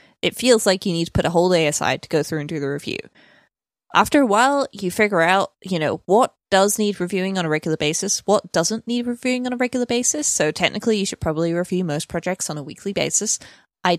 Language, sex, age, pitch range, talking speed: English, female, 20-39, 160-215 Hz, 235 wpm